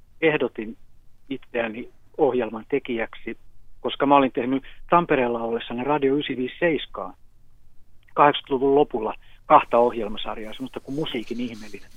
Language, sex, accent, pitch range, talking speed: Finnish, male, native, 120-145 Hz, 100 wpm